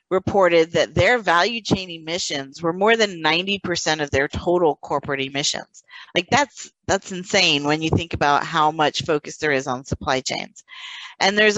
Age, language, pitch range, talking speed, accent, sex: 40-59, English, 150-195 Hz, 170 wpm, American, female